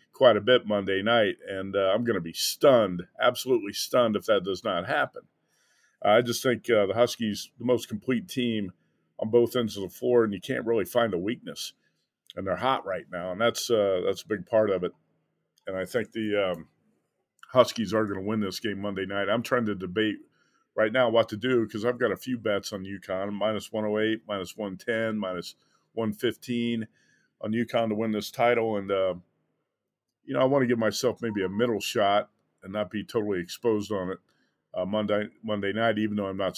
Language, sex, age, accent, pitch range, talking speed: English, male, 50-69, American, 95-115 Hz, 210 wpm